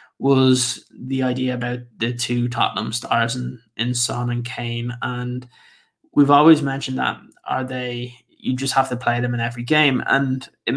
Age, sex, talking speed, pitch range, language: 20-39, male, 175 wpm, 120-140 Hz, English